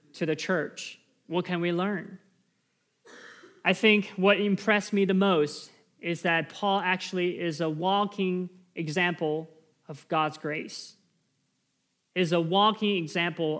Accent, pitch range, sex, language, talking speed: American, 165-195 Hz, male, English, 130 wpm